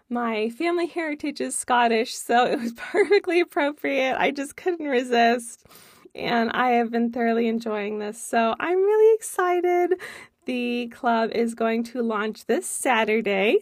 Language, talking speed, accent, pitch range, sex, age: English, 145 wpm, American, 235-350 Hz, female, 20-39